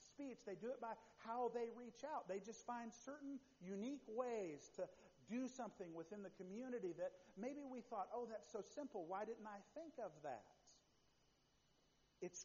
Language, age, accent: English, 50-69, American